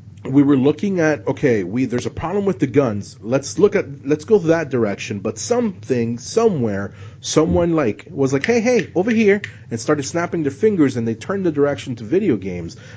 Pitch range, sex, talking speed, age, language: 110-160 Hz, male, 200 wpm, 30-49, English